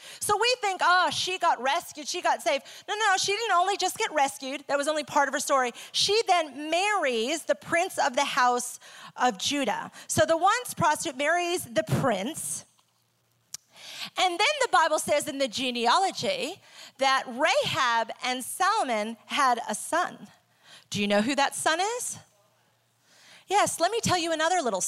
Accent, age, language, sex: American, 30-49, English, female